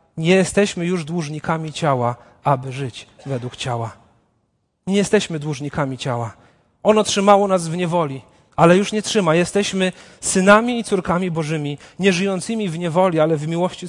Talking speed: 145 wpm